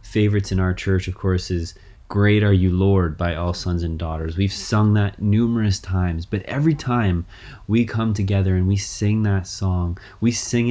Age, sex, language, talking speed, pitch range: 20-39, male, English, 190 wpm, 95-110 Hz